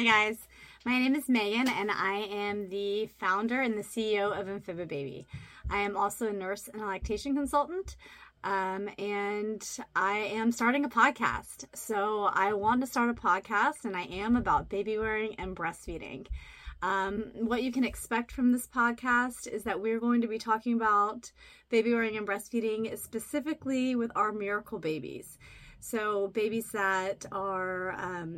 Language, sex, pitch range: English, female, 200-245 Hz